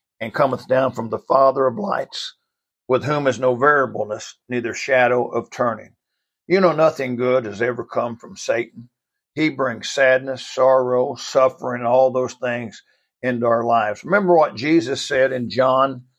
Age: 60-79